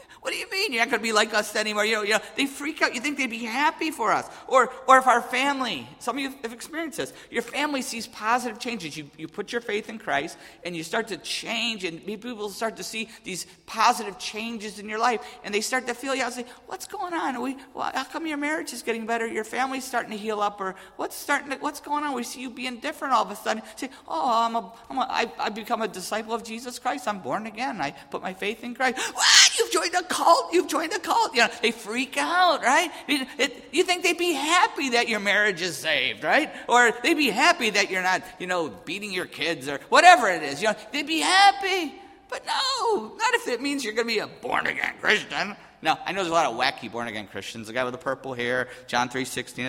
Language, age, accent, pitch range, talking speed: English, 50-69, American, 210-280 Hz, 255 wpm